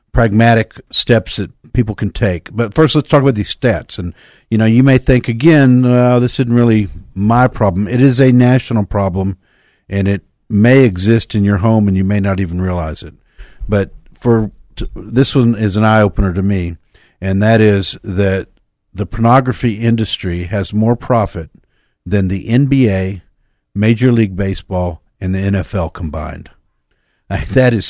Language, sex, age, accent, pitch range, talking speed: English, male, 50-69, American, 95-115 Hz, 160 wpm